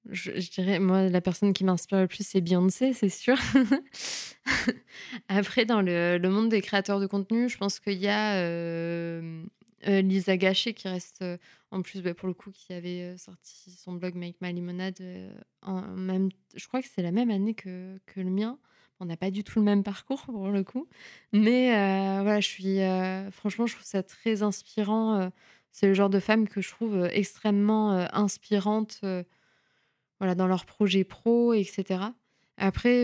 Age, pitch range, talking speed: 20-39, 185-215 Hz, 195 wpm